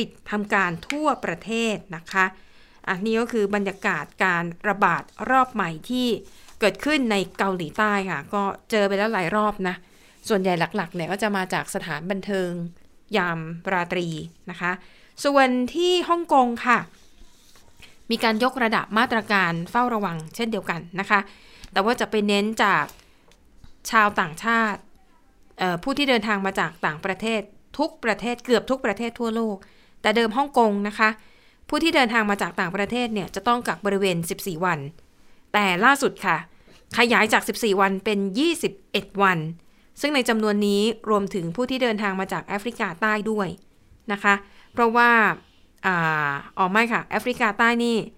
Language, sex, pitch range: Thai, female, 190-230 Hz